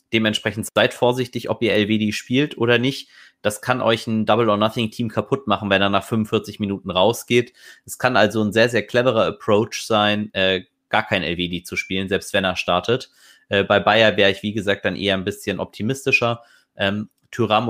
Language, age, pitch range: German, 30-49, 95-110 Hz